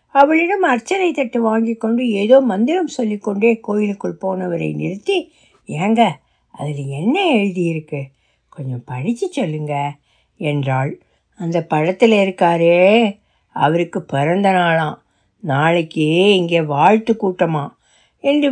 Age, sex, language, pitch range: 60-79, female, Tamil, 185-255 Hz